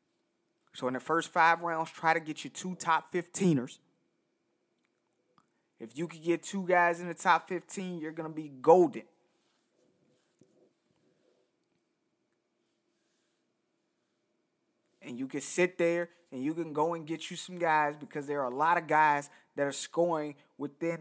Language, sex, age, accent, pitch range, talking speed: English, male, 30-49, American, 145-170 Hz, 150 wpm